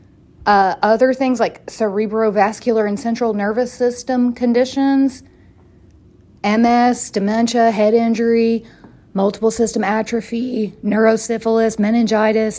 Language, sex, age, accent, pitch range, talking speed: English, female, 40-59, American, 220-290 Hz, 90 wpm